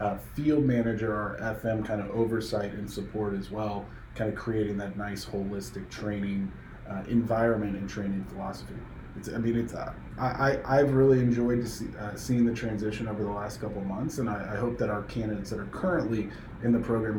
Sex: male